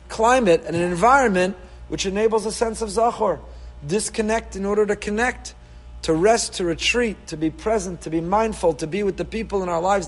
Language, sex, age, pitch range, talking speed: English, male, 40-59, 150-205 Hz, 195 wpm